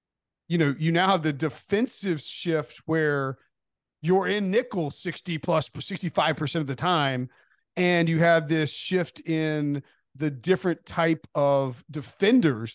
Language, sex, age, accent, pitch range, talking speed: English, male, 40-59, American, 145-175 Hz, 135 wpm